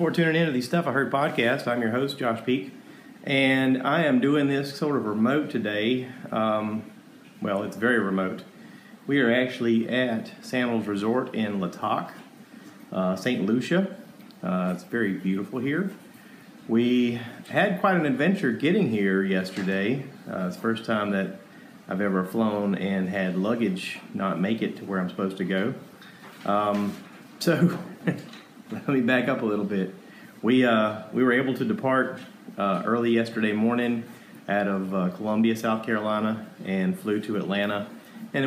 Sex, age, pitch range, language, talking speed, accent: male, 40-59, 100-130 Hz, English, 160 wpm, American